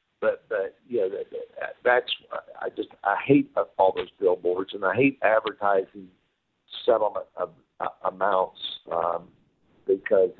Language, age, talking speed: English, 50-69, 150 wpm